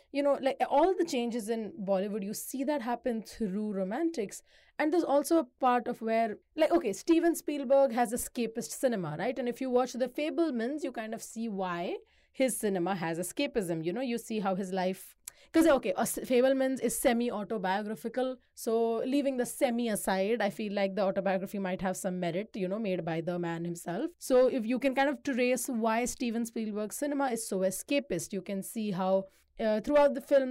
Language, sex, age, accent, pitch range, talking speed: English, female, 30-49, Indian, 205-270 Hz, 195 wpm